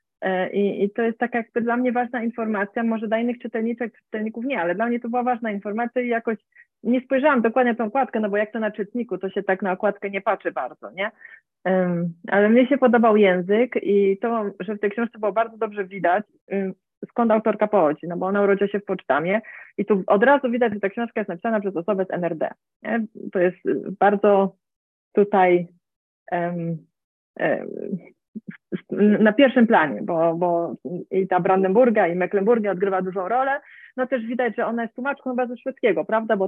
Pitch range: 190-235 Hz